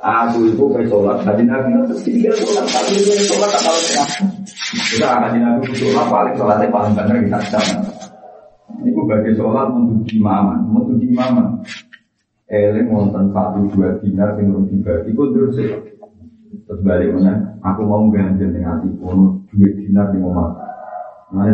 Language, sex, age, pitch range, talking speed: Malay, male, 40-59, 100-120 Hz, 150 wpm